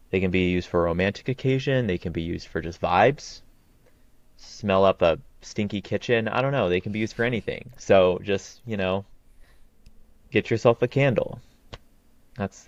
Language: English